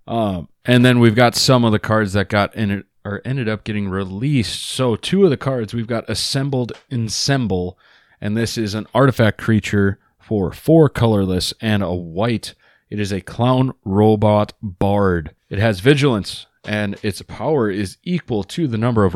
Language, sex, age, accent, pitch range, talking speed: English, male, 30-49, American, 100-130 Hz, 180 wpm